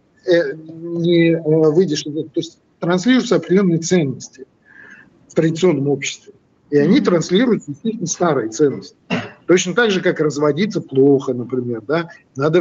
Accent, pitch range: native, 150-185 Hz